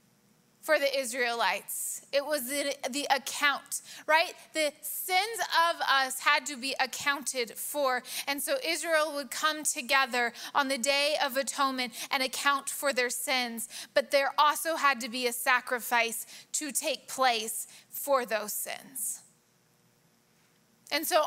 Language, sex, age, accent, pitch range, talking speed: English, female, 20-39, American, 275-330 Hz, 140 wpm